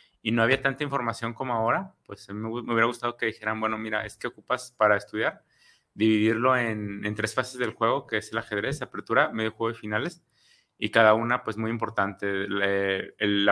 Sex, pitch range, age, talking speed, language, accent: male, 105-120 Hz, 30-49, 200 wpm, Spanish, Mexican